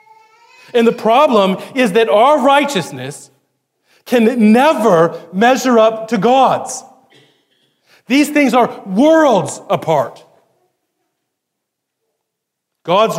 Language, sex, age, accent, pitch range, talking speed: English, male, 40-59, American, 195-250 Hz, 85 wpm